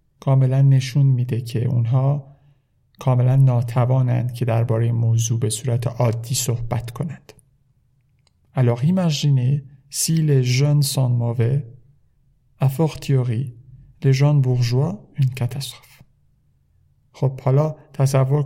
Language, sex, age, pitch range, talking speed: Persian, male, 50-69, 125-145 Hz, 100 wpm